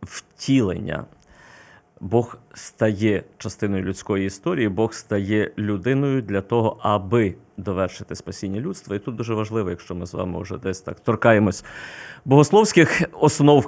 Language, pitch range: Ukrainian, 105-130 Hz